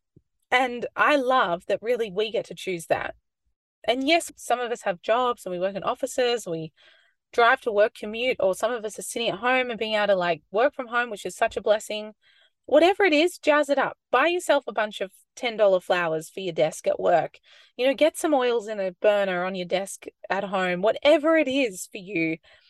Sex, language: female, English